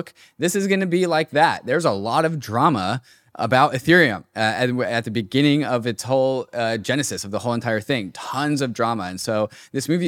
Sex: male